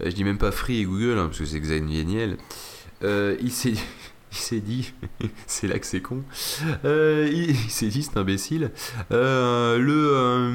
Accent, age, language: French, 30-49, French